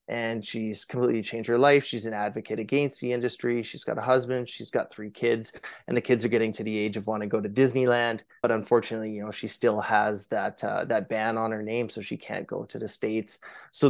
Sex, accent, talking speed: male, American, 240 wpm